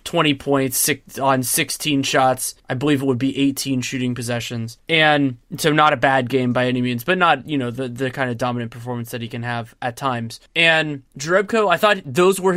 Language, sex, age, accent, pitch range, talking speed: English, male, 20-39, American, 135-165 Hz, 210 wpm